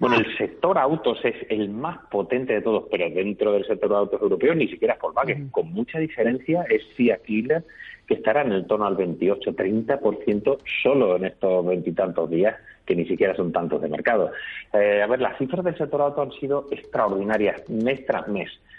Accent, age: Spanish, 30-49